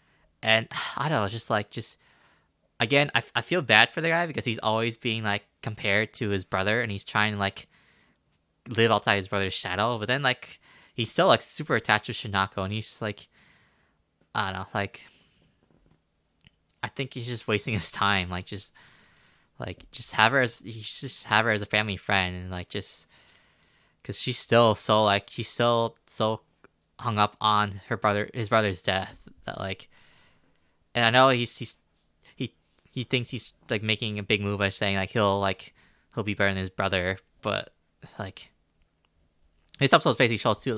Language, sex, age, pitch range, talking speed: English, male, 10-29, 100-115 Hz, 190 wpm